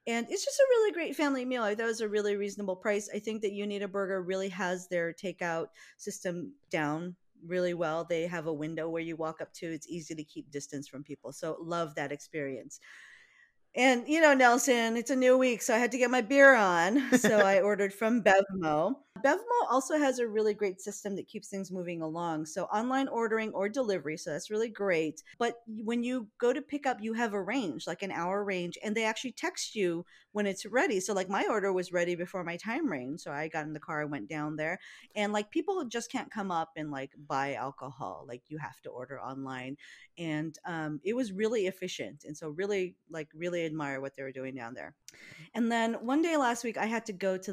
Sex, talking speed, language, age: female, 225 wpm, English, 40-59